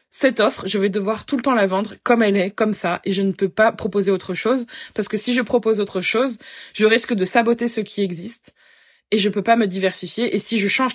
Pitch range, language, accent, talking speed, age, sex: 200-255 Hz, French, French, 260 wpm, 20-39, female